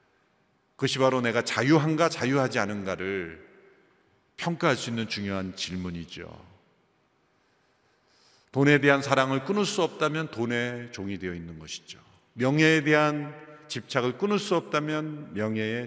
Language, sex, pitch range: Korean, male, 105-155 Hz